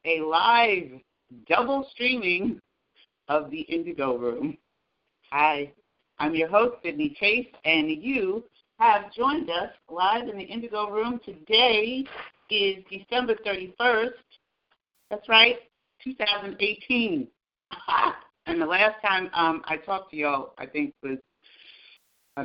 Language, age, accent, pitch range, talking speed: English, 40-59, American, 145-230 Hz, 120 wpm